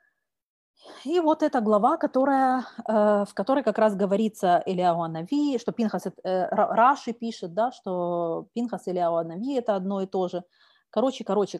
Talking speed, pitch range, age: 135 wpm, 200-260 Hz, 30-49